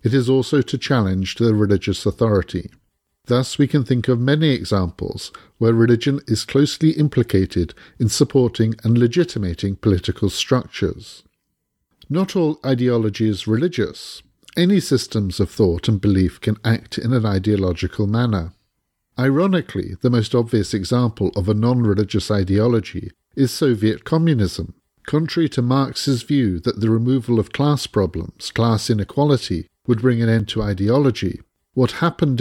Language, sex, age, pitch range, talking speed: English, male, 50-69, 100-130 Hz, 140 wpm